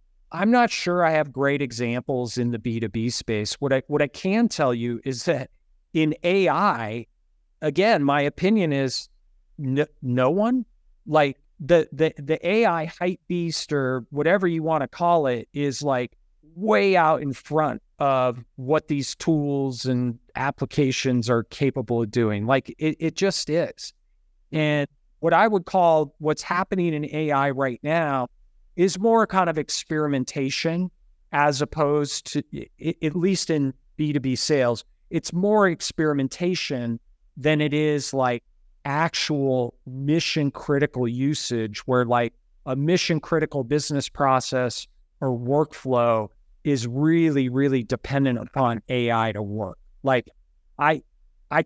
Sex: male